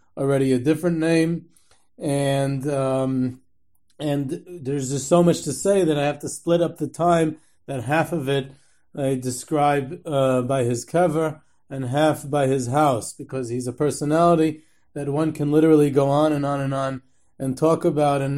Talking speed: 175 wpm